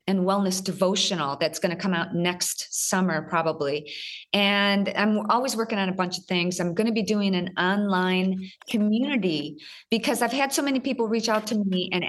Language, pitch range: English, 185-230 Hz